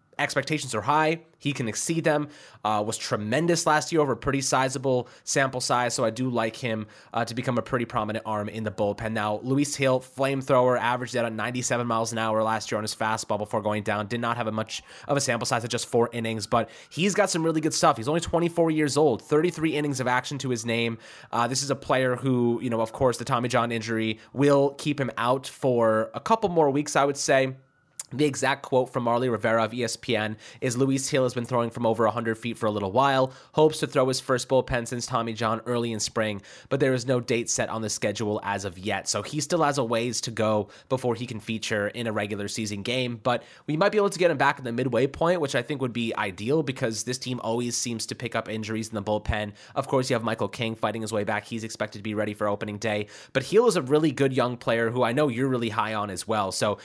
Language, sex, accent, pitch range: English, male, American, 110-135 Hz